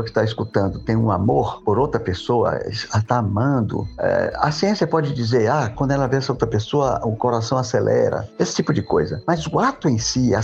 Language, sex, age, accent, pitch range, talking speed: Portuguese, male, 50-69, Brazilian, 110-155 Hz, 205 wpm